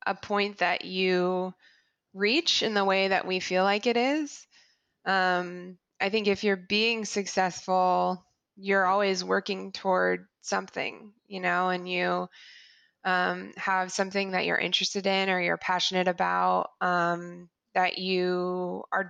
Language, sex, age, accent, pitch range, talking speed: English, female, 20-39, American, 180-200 Hz, 140 wpm